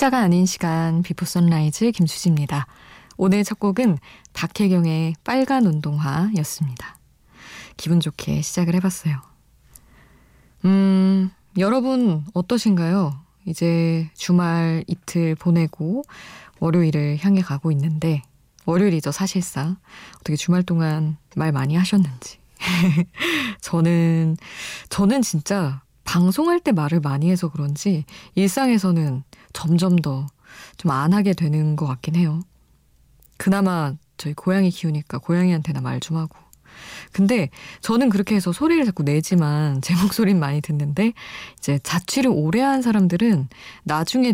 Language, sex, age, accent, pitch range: Korean, female, 20-39, native, 155-195 Hz